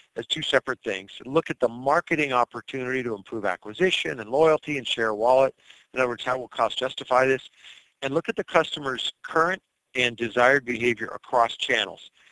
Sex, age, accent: male, 50-69, American